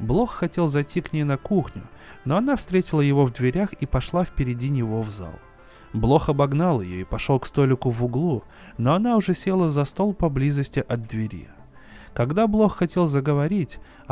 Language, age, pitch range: Russian, 20-39, 120-170 Hz